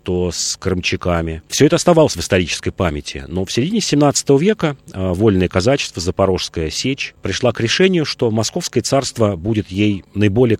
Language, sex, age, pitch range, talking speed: Russian, male, 30-49, 95-130 Hz, 155 wpm